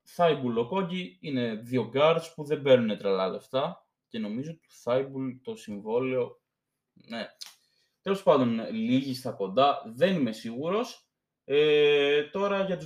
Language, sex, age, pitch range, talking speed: Greek, male, 20-39, 120-195 Hz, 130 wpm